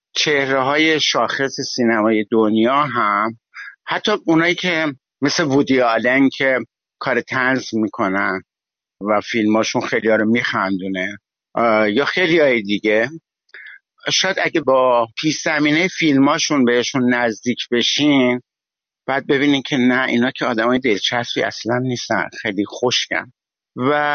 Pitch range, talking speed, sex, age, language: 120-145 Hz, 110 wpm, male, 50-69, Persian